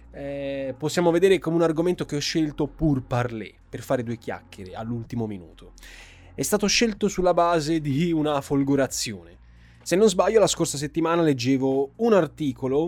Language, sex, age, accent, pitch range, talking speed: Italian, male, 20-39, native, 115-160 Hz, 160 wpm